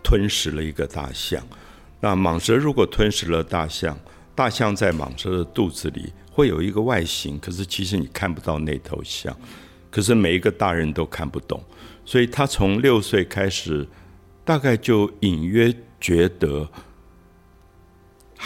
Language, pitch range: Chinese, 80-105 Hz